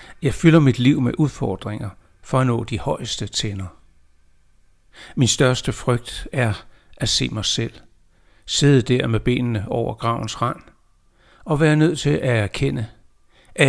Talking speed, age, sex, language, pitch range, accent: 150 wpm, 60-79, male, Danish, 105-135 Hz, native